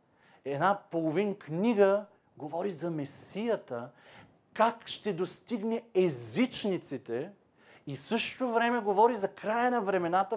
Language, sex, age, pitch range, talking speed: Bulgarian, male, 40-59, 160-220 Hz, 105 wpm